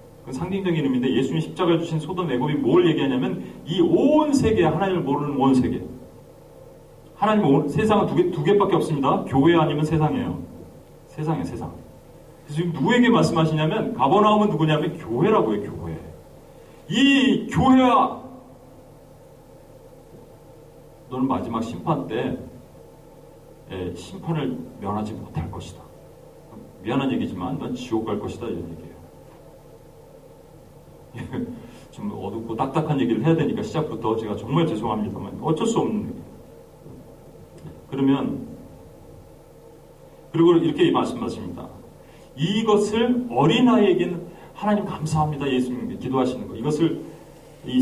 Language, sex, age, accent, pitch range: Korean, male, 40-59, native, 130-210 Hz